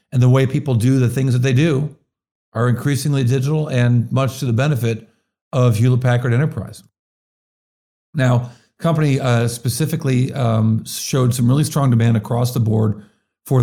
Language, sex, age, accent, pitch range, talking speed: English, male, 50-69, American, 115-135 Hz, 160 wpm